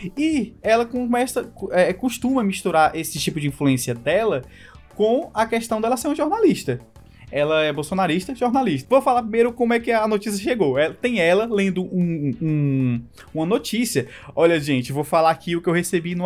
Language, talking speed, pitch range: Portuguese, 180 wpm, 170-240 Hz